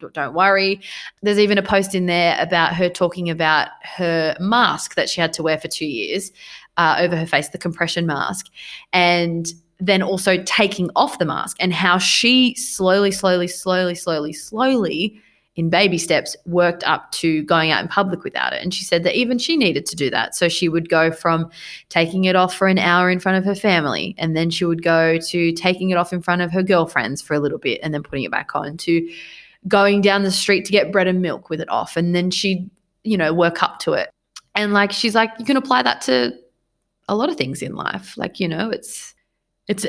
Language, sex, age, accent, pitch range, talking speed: English, female, 20-39, Australian, 165-200 Hz, 225 wpm